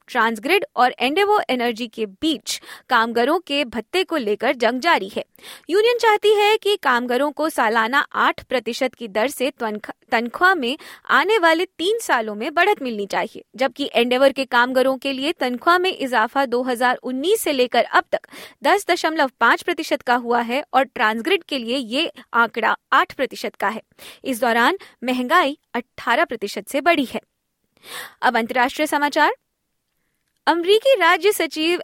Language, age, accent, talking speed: Hindi, 20-39, native, 145 wpm